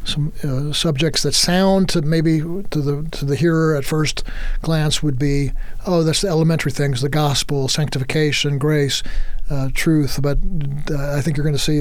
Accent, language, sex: American, English, male